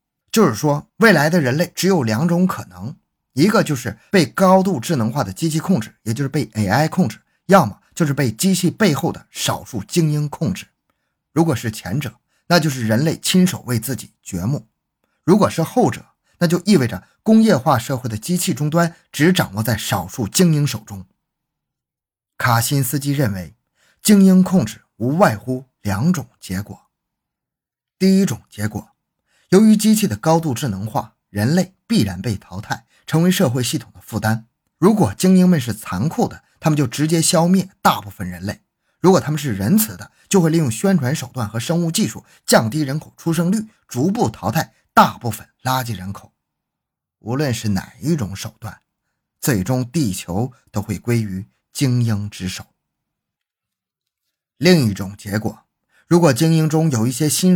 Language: Chinese